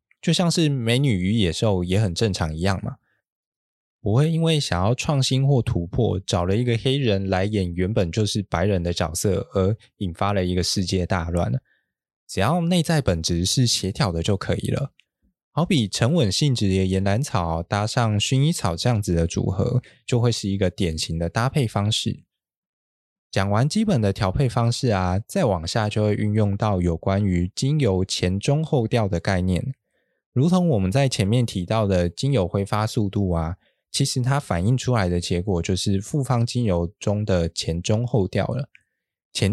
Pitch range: 95-125 Hz